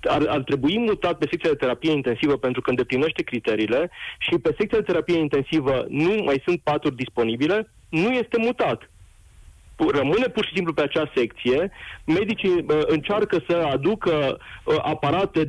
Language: Romanian